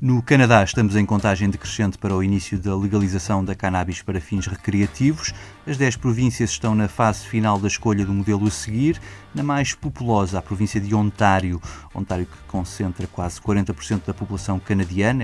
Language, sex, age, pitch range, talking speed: Portuguese, male, 20-39, 95-120 Hz, 175 wpm